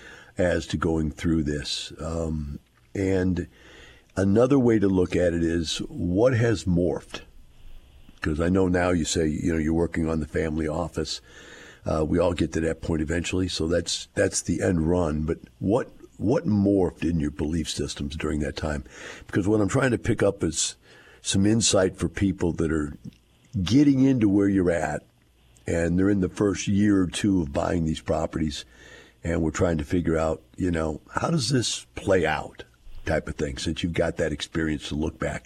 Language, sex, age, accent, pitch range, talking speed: English, male, 50-69, American, 80-95 Hz, 190 wpm